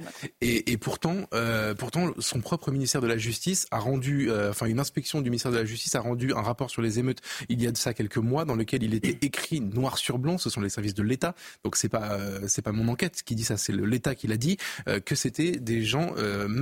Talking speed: 260 wpm